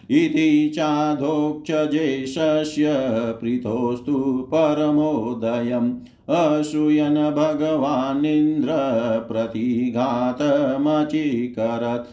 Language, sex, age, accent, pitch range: Hindi, male, 50-69, native, 120-150 Hz